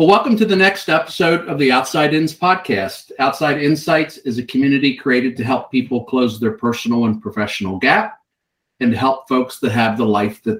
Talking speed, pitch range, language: 200 wpm, 115-150 Hz, English